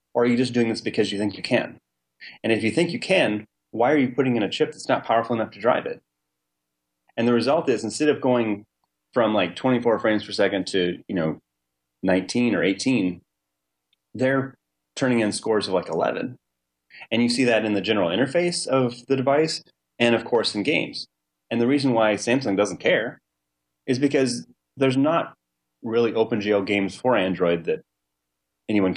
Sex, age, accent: male, 30-49, American